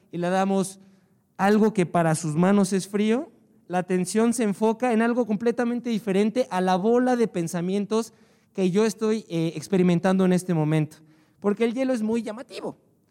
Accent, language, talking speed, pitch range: Mexican, Spanish, 165 wpm, 175-220 Hz